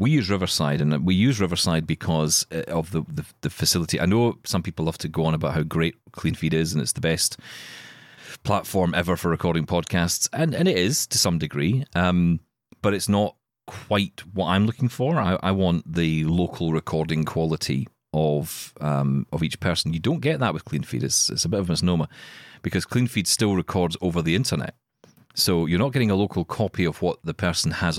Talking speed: 205 wpm